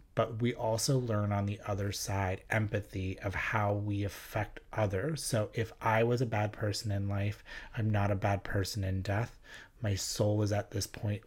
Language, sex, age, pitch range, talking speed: English, male, 30-49, 100-120 Hz, 190 wpm